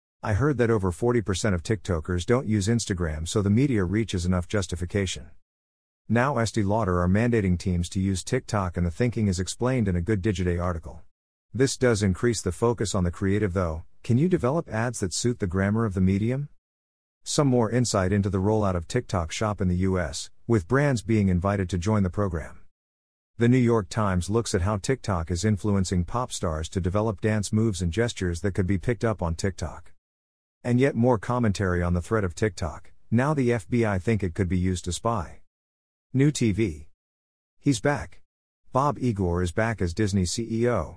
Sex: male